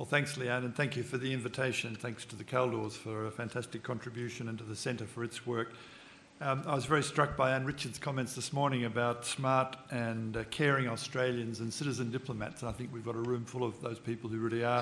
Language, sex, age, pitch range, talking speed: English, male, 50-69, 120-135 Hz, 230 wpm